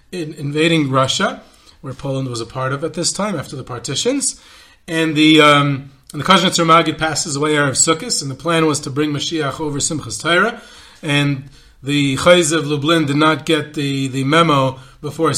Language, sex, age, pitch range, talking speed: English, male, 30-49, 140-165 Hz, 185 wpm